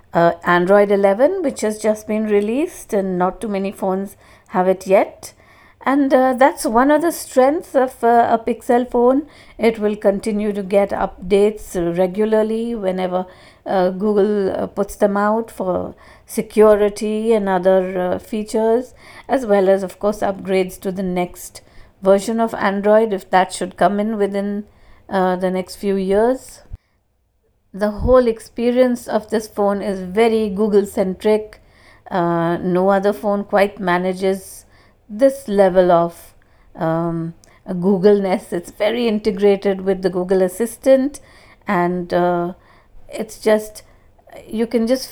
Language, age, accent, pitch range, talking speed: English, 50-69, Indian, 185-225 Hz, 140 wpm